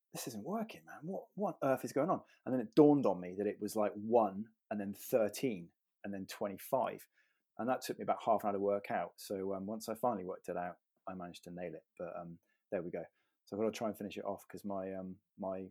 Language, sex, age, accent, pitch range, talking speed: English, male, 20-39, British, 100-125 Hz, 270 wpm